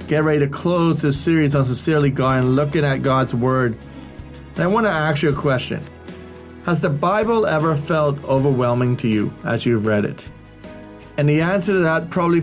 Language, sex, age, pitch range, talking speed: English, male, 30-49, 130-160 Hz, 190 wpm